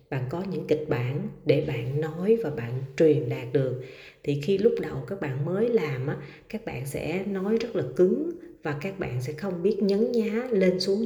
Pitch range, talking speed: 130-180 Hz, 205 wpm